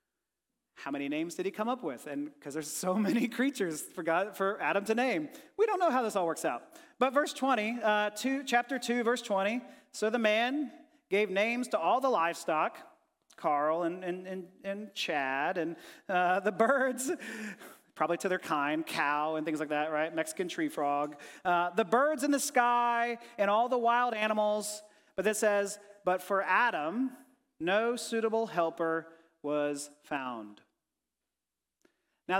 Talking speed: 170 wpm